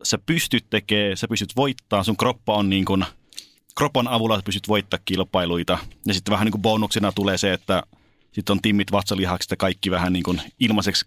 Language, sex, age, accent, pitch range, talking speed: Finnish, male, 30-49, native, 95-110 Hz, 195 wpm